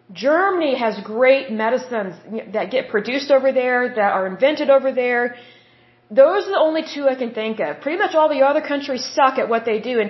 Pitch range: 220-280 Hz